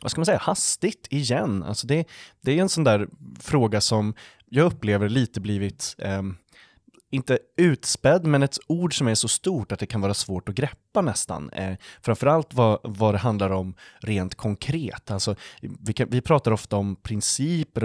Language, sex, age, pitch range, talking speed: Swedish, male, 20-39, 100-130 Hz, 180 wpm